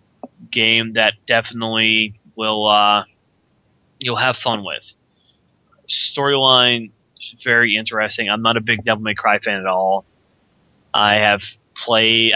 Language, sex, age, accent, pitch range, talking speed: English, male, 20-39, American, 105-115 Hz, 120 wpm